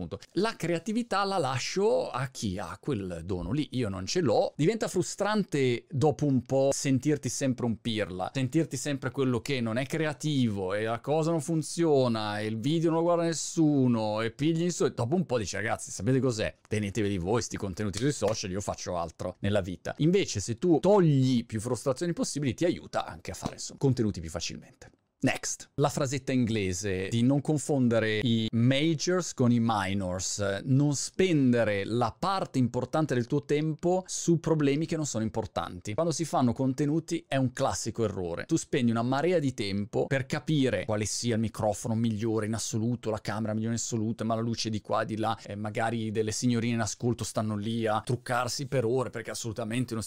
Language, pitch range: Italian, 110-150 Hz